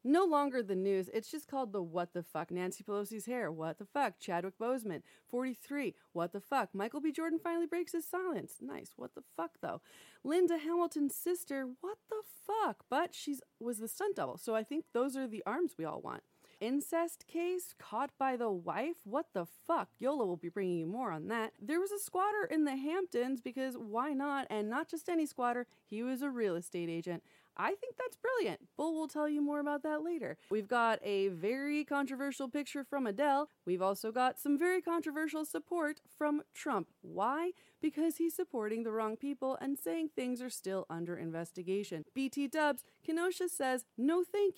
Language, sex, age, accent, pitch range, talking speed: English, female, 30-49, American, 205-305 Hz, 195 wpm